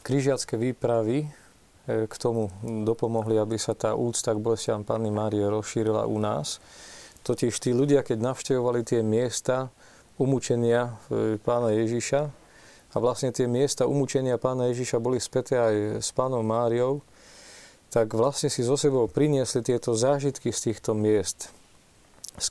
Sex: male